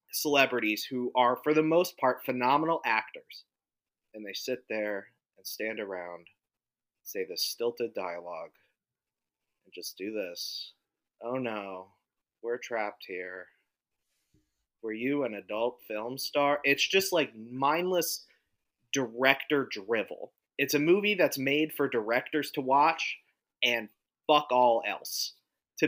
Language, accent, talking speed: English, American, 130 wpm